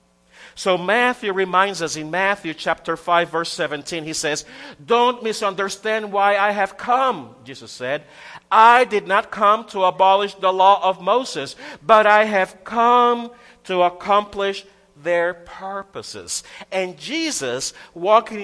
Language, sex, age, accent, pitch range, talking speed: English, male, 50-69, American, 165-210 Hz, 135 wpm